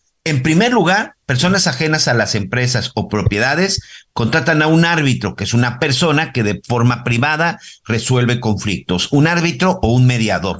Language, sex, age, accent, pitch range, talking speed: Spanish, male, 50-69, Mexican, 110-150 Hz, 165 wpm